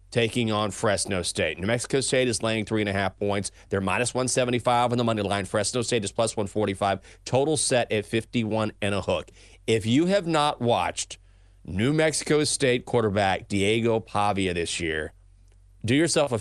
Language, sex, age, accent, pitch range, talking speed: English, male, 30-49, American, 100-130 Hz, 180 wpm